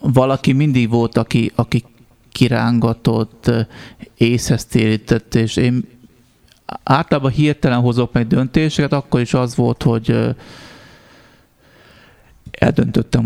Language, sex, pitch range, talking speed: Hungarian, male, 110-120 Hz, 95 wpm